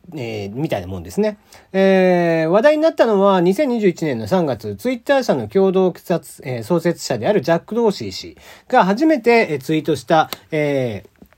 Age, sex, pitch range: 40-59, male, 125-200 Hz